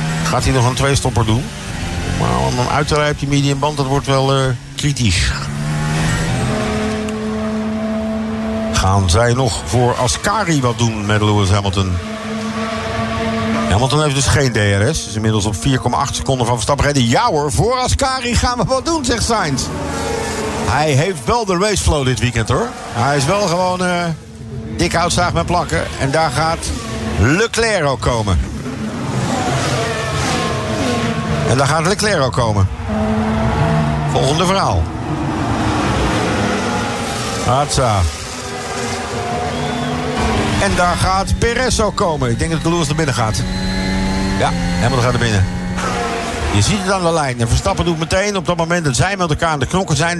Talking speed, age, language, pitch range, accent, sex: 145 wpm, 50-69, English, 105-160 Hz, Dutch, male